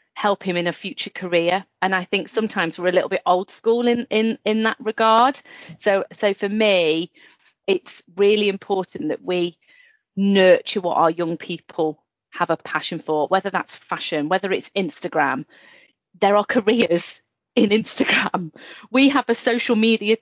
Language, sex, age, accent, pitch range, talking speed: English, female, 40-59, British, 170-225 Hz, 165 wpm